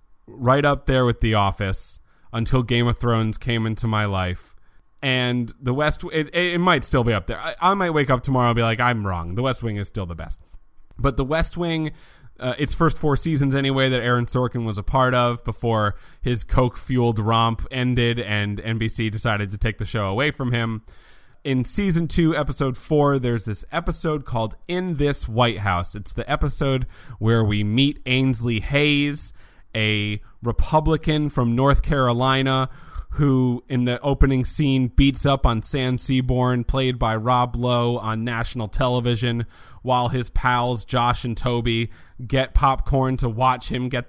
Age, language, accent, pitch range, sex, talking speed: 30-49, English, American, 110-135 Hz, male, 175 wpm